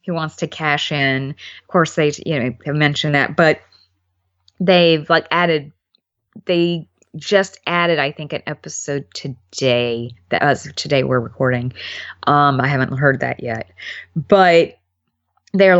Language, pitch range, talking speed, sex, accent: English, 140-190 Hz, 150 wpm, female, American